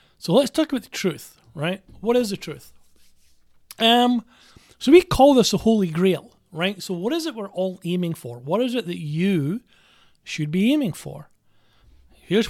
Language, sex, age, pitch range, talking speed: English, male, 40-59, 140-190 Hz, 180 wpm